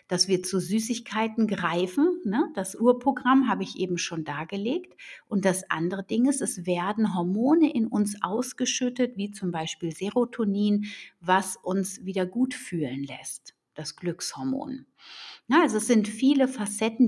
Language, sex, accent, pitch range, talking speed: German, female, German, 185-250 Hz, 140 wpm